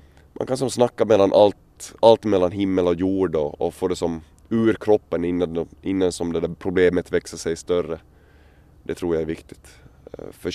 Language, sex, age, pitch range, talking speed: Swedish, male, 20-39, 80-95 Hz, 170 wpm